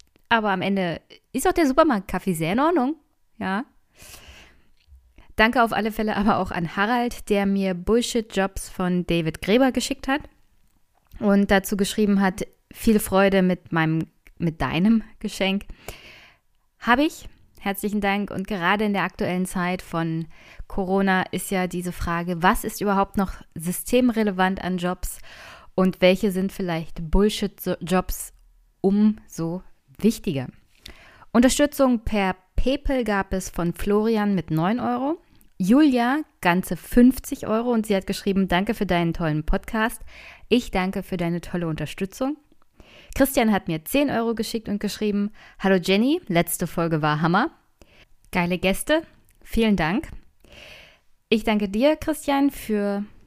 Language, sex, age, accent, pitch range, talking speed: German, female, 20-39, German, 180-225 Hz, 140 wpm